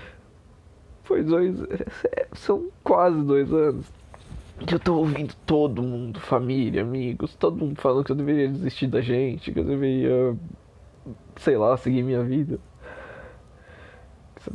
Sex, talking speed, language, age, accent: male, 130 wpm, Portuguese, 20-39, Brazilian